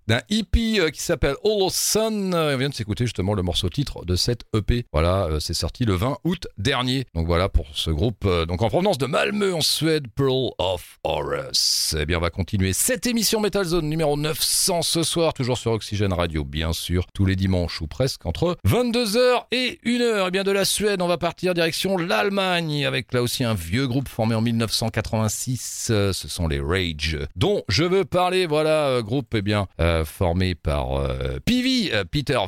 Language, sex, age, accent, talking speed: French, male, 40-59, French, 205 wpm